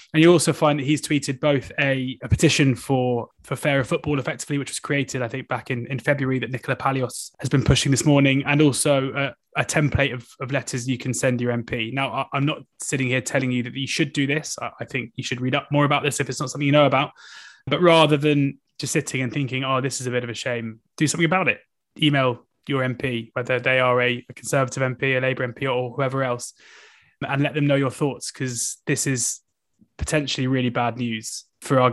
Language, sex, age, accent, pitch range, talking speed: English, male, 20-39, British, 125-145 Hz, 235 wpm